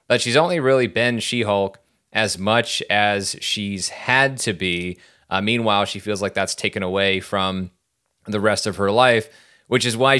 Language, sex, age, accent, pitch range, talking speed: English, male, 30-49, American, 95-115 Hz, 175 wpm